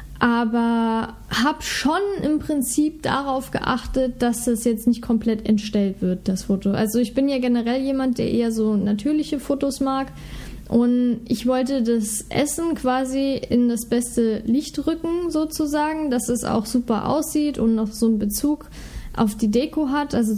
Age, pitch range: 10-29, 225-270 Hz